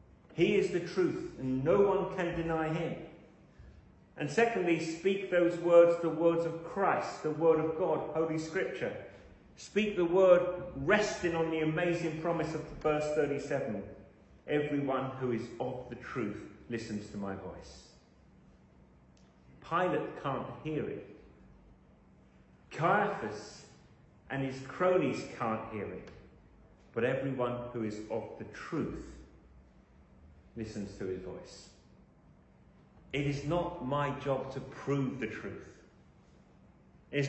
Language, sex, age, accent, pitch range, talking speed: English, male, 40-59, British, 110-170 Hz, 125 wpm